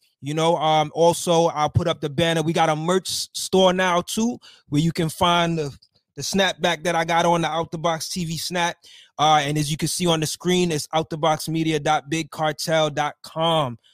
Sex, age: male, 20-39